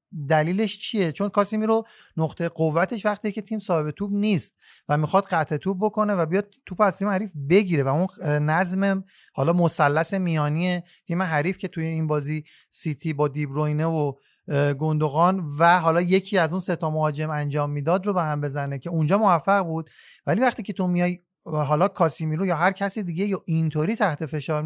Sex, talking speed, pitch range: male, 180 wpm, 155-200 Hz